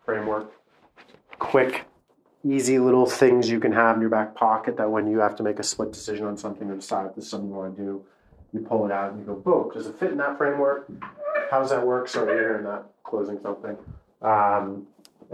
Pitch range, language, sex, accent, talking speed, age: 105-125 Hz, English, male, American, 230 wpm, 30-49